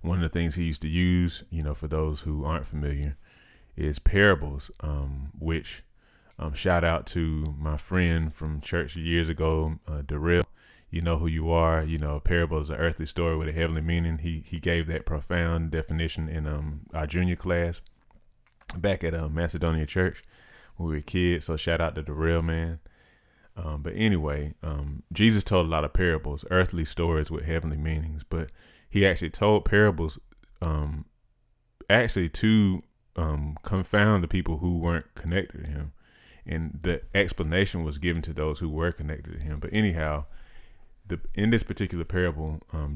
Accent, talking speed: American, 175 wpm